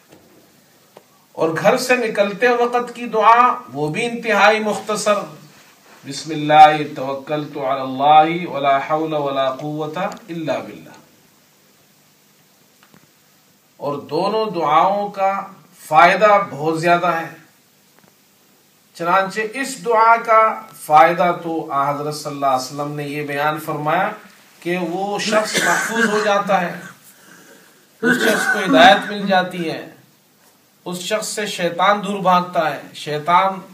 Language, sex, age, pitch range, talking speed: Urdu, male, 40-59, 150-200 Hz, 115 wpm